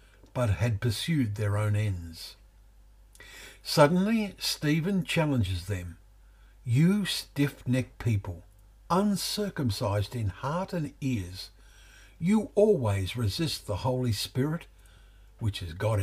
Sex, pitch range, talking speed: male, 100-140 Hz, 100 wpm